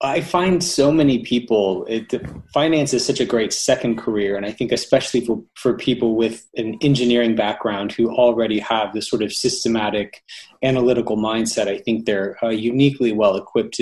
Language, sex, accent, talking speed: English, male, American, 165 wpm